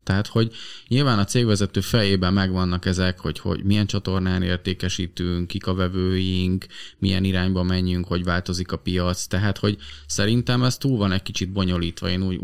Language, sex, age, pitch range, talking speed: Hungarian, male, 20-39, 90-105 Hz, 165 wpm